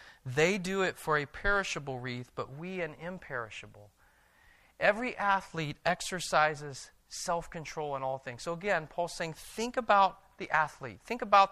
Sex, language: male, English